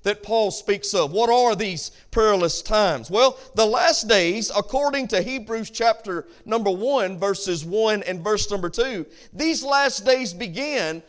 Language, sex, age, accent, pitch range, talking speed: English, male, 40-59, American, 195-255 Hz, 155 wpm